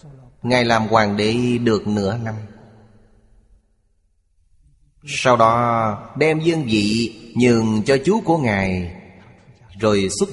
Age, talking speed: 30-49, 110 wpm